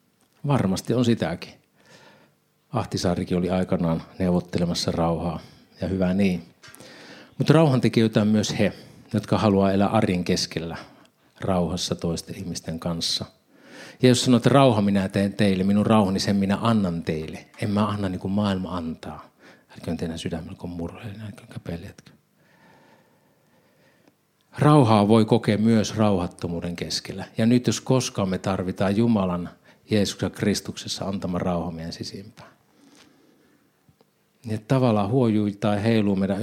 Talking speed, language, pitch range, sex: 125 wpm, Finnish, 90-110 Hz, male